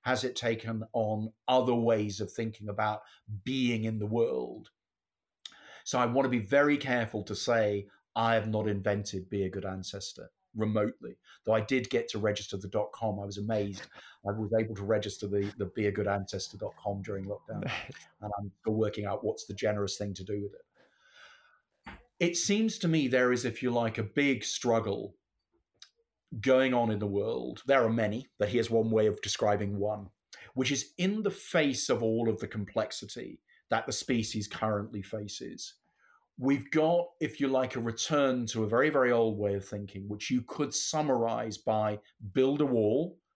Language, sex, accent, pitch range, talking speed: English, male, British, 105-125 Hz, 185 wpm